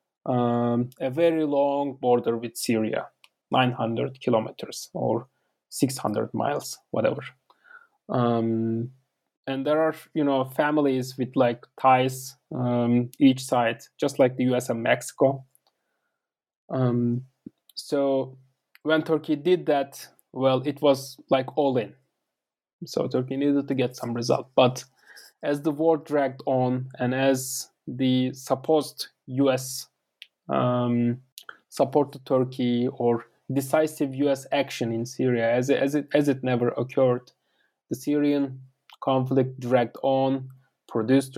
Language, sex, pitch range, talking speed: English, male, 125-140 Hz, 125 wpm